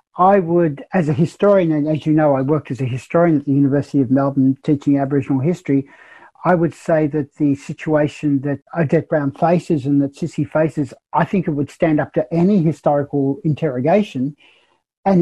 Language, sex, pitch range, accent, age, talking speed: English, male, 145-170 Hz, Australian, 60-79, 185 wpm